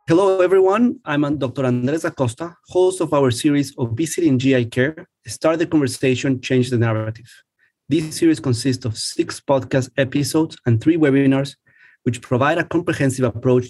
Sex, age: male, 30-49